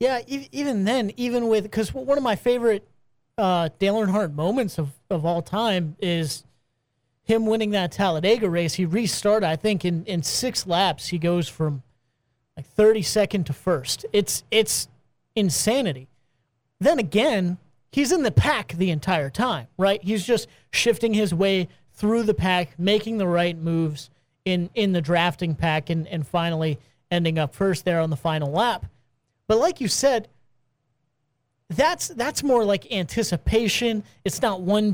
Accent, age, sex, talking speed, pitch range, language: American, 30-49, male, 160 wpm, 155-220 Hz, English